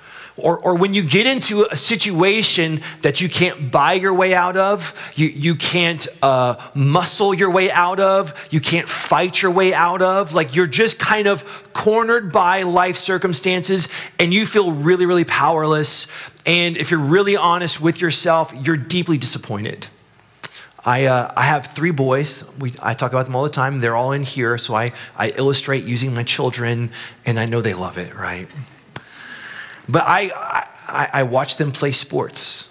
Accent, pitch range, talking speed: American, 135-180 Hz, 180 wpm